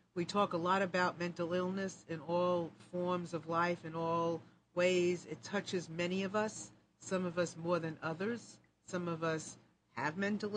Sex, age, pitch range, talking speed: female, 50-69, 165-205 Hz, 175 wpm